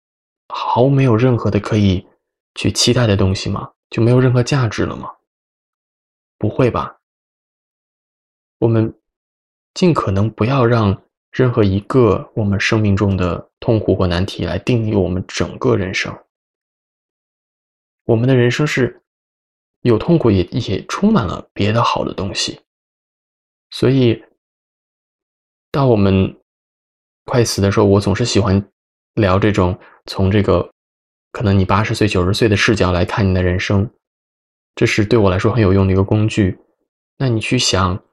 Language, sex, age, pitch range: Chinese, male, 20-39, 95-115 Hz